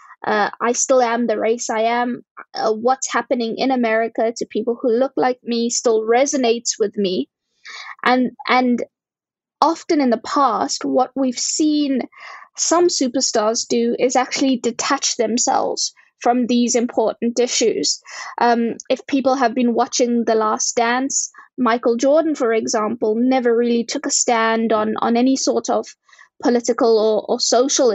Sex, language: female, English